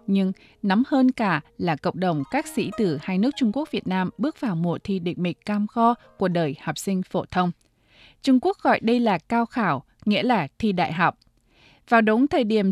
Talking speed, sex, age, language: 215 wpm, female, 20-39, Vietnamese